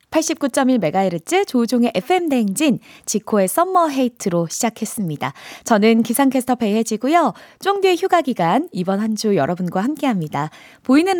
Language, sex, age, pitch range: Korean, female, 20-39, 195-285 Hz